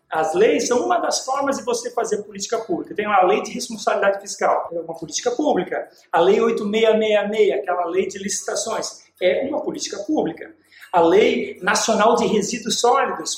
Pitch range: 200-245 Hz